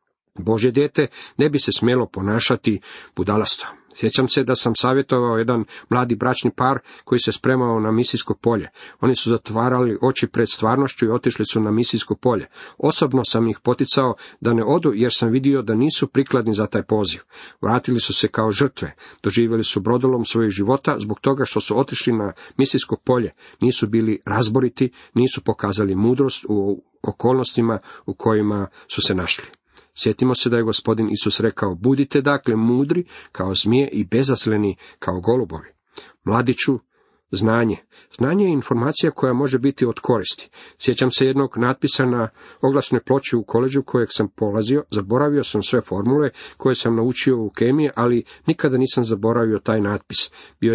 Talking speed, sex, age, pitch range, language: 160 wpm, male, 50-69, 110-130 Hz, Croatian